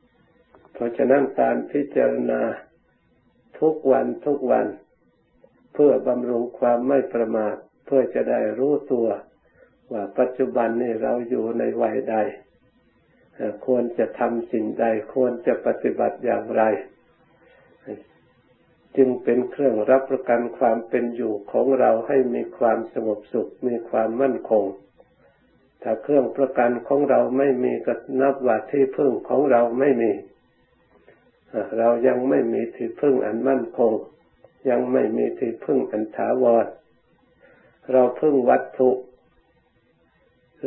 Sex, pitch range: male, 115-135 Hz